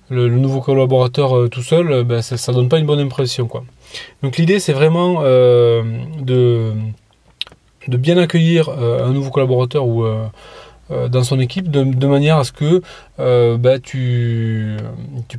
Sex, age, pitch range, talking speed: male, 20-39, 125-155 Hz, 170 wpm